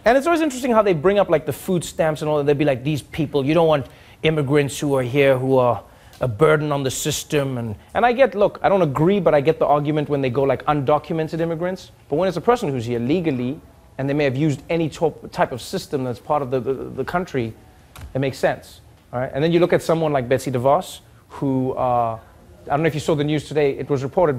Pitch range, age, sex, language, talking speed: 130-170 Hz, 30-49, male, English, 260 wpm